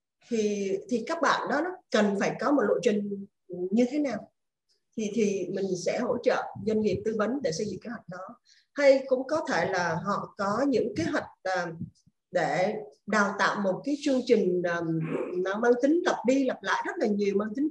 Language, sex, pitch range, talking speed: Vietnamese, female, 190-260 Hz, 205 wpm